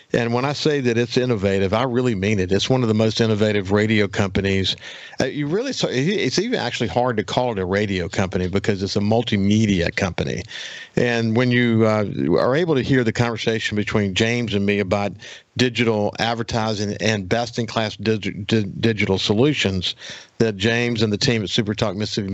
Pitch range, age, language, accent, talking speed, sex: 105-120 Hz, 50-69, English, American, 175 wpm, male